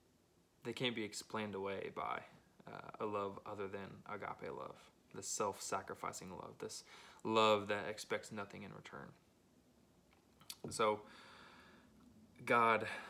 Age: 20-39